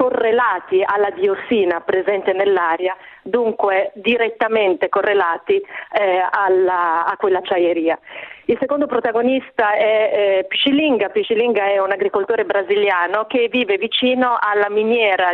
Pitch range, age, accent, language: 190-255 Hz, 40-59, native, Italian